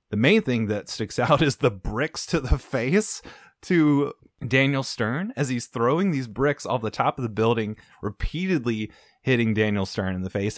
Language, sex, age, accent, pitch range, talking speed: English, male, 20-39, American, 110-145 Hz, 185 wpm